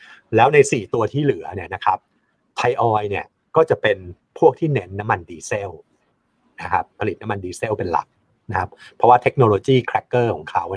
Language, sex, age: Thai, male, 60-79